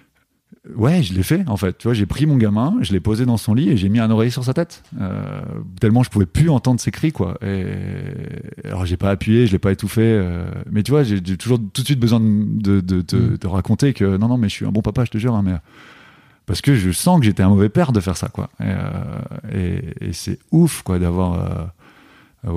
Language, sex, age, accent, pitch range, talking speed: French, male, 30-49, French, 95-120 Hz, 245 wpm